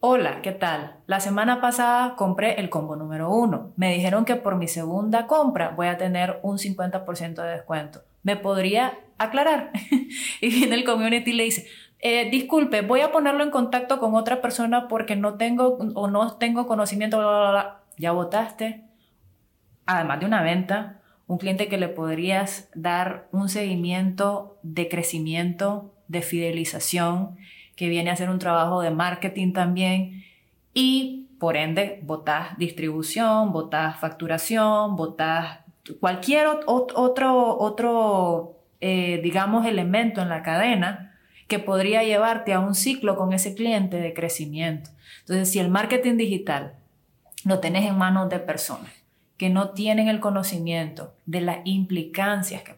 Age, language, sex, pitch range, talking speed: 30-49, Spanish, female, 175-220 Hz, 150 wpm